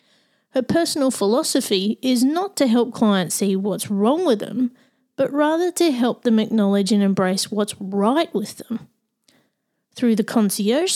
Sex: female